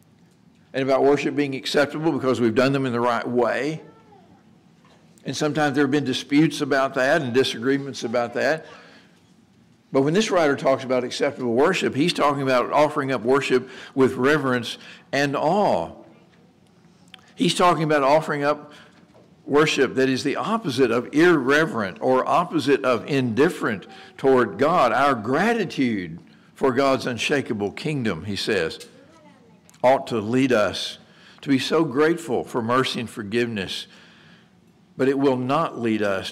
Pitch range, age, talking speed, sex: 125-150 Hz, 60-79, 145 wpm, male